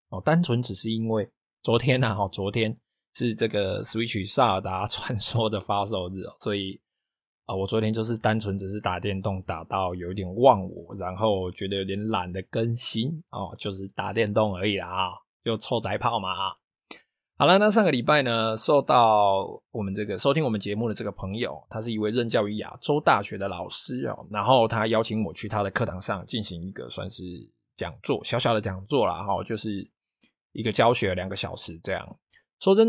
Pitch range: 100-120 Hz